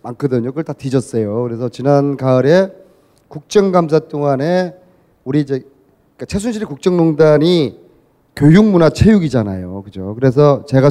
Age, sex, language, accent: 30-49, male, Korean, native